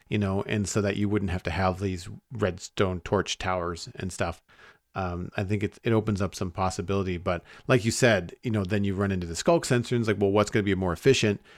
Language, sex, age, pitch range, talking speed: English, male, 40-59, 95-115 Hz, 235 wpm